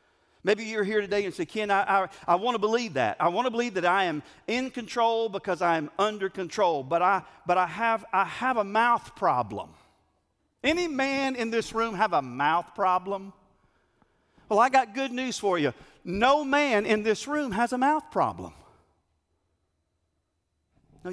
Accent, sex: American, male